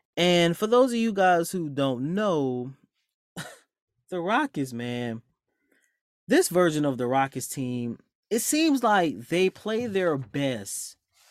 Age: 20-39